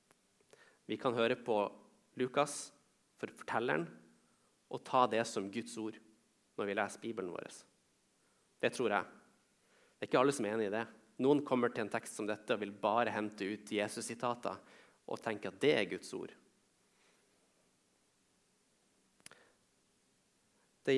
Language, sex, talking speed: English, male, 150 wpm